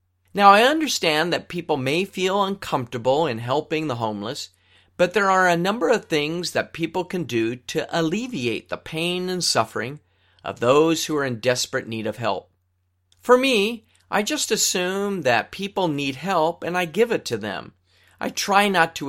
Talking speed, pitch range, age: 180 wpm, 115-170 Hz, 40-59